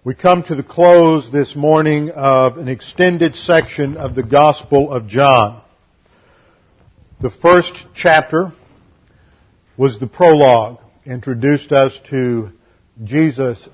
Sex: male